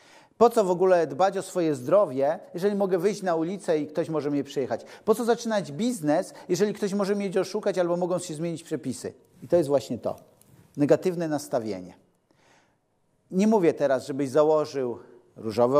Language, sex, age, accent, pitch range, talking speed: Polish, male, 50-69, native, 135-185 Hz, 170 wpm